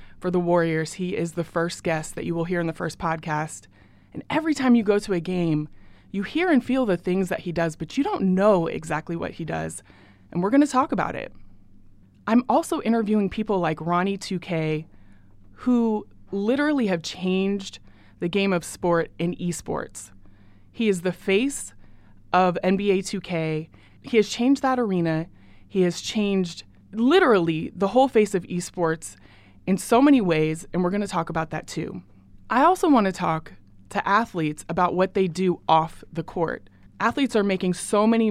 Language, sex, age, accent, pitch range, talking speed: English, female, 20-39, American, 160-200 Hz, 180 wpm